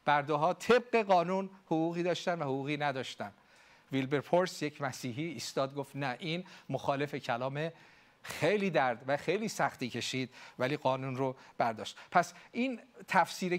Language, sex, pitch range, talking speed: Persian, male, 140-195 Hz, 135 wpm